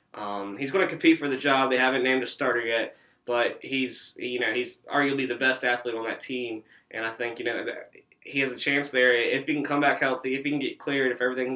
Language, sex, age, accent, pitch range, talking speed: English, male, 20-39, American, 115-140 Hz, 260 wpm